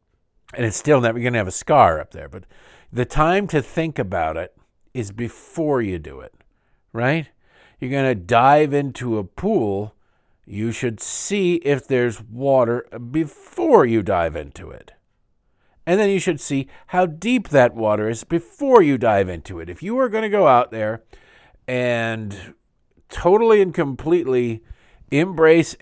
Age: 50-69